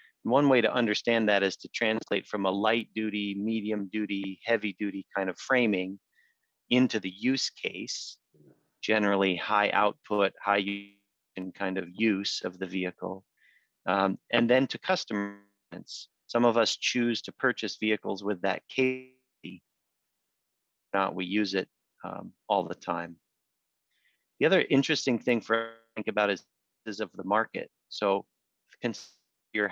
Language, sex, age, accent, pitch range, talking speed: English, male, 40-59, American, 100-115 Hz, 145 wpm